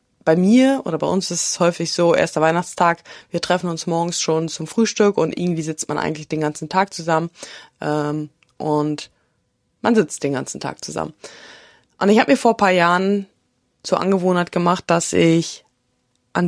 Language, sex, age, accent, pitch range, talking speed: German, female, 20-39, German, 165-195 Hz, 180 wpm